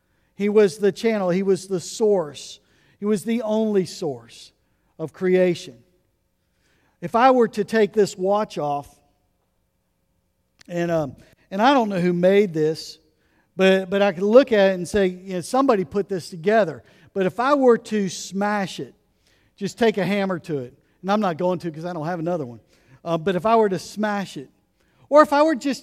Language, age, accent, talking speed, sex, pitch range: English, 50-69, American, 195 wpm, male, 170-225 Hz